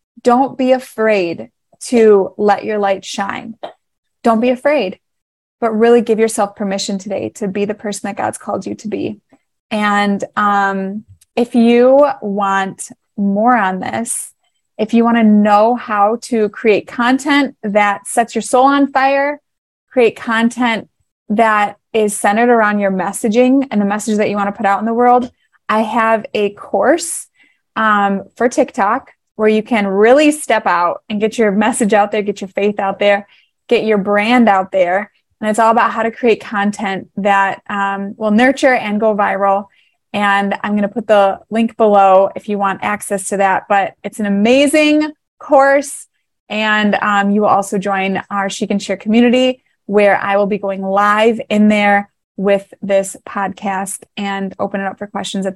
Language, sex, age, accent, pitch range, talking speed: English, female, 20-39, American, 200-235 Hz, 175 wpm